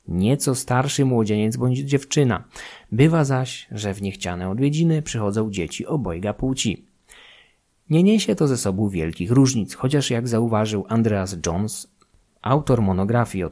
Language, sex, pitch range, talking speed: Polish, male, 100-135 Hz, 135 wpm